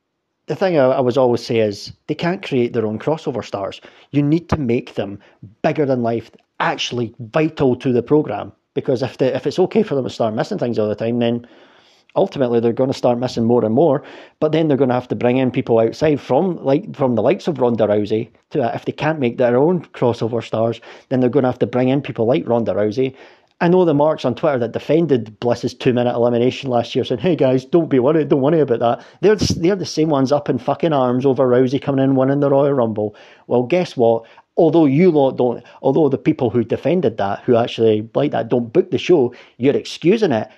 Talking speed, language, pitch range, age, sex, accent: 230 wpm, English, 120-145 Hz, 40-59, male, British